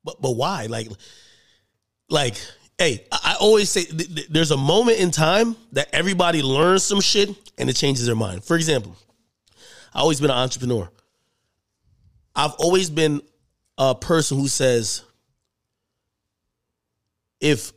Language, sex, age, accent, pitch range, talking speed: English, male, 30-49, American, 120-180 Hz, 140 wpm